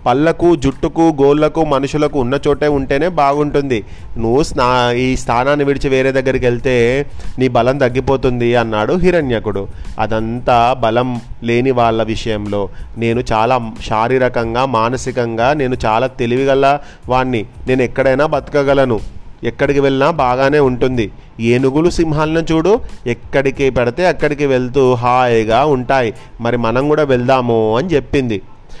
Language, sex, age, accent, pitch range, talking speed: Telugu, male, 30-49, native, 120-150 Hz, 115 wpm